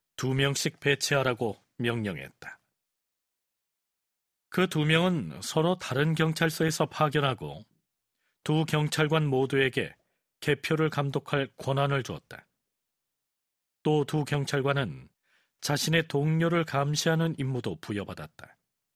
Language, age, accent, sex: Korean, 40-59, native, male